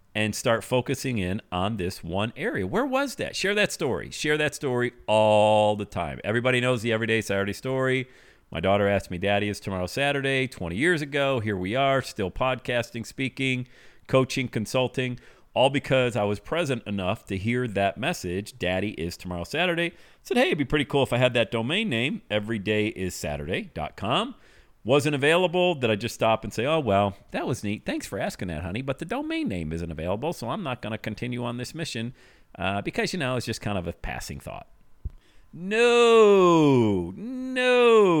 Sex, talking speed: male, 190 wpm